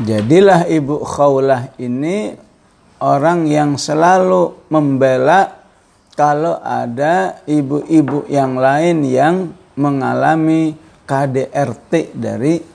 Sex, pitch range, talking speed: male, 100-155 Hz, 80 wpm